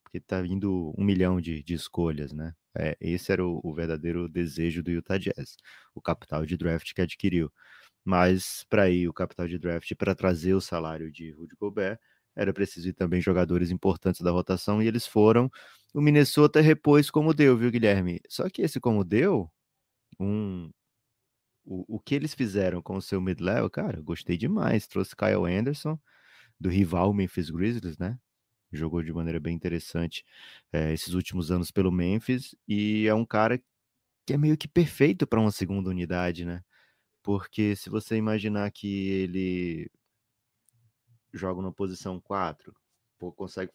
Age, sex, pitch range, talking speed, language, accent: 20-39, male, 90-110 Hz, 165 wpm, Portuguese, Brazilian